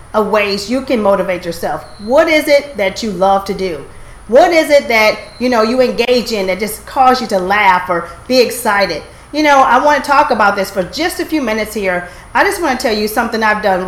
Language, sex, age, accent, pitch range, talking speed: English, female, 40-59, American, 205-270 Hz, 240 wpm